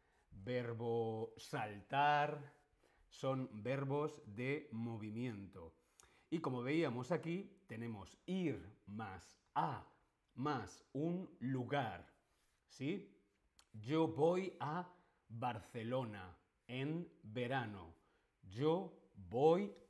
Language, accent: Spanish, Spanish